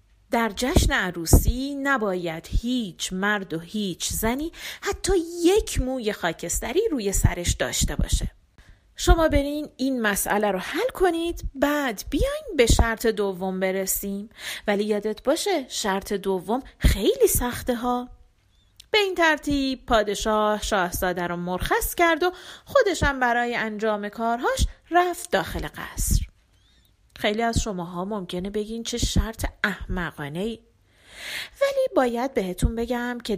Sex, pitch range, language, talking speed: female, 200-300 Hz, Persian, 120 wpm